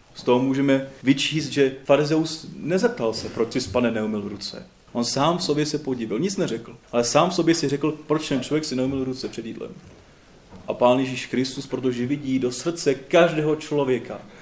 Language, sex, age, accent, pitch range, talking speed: Czech, male, 30-49, native, 120-145 Hz, 185 wpm